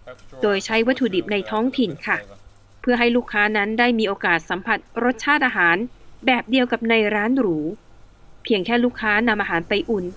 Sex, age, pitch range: female, 20-39, 180-245 Hz